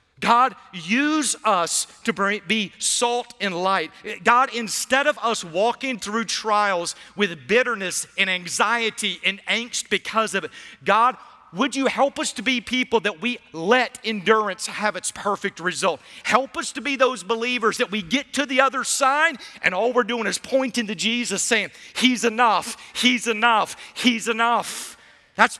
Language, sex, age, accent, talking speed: English, male, 50-69, American, 160 wpm